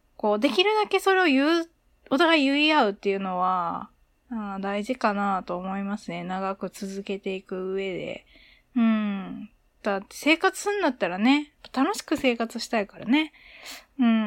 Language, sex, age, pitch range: Japanese, female, 20-39, 190-290 Hz